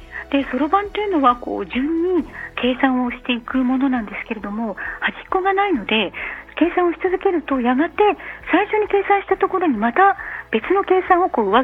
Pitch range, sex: 235-345 Hz, female